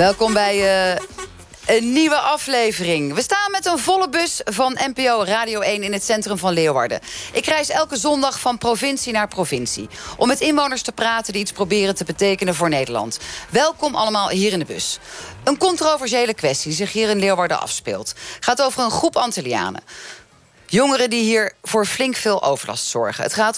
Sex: female